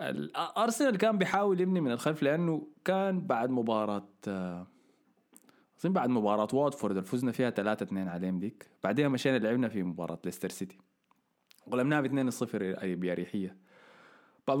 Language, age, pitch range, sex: Arabic, 20-39, 105-155 Hz, male